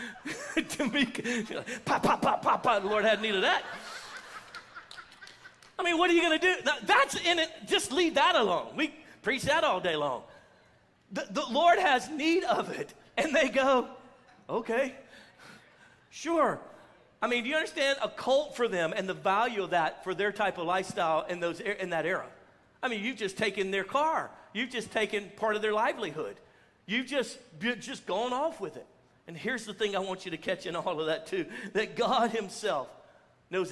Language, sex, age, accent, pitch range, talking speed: English, male, 40-59, American, 185-245 Hz, 190 wpm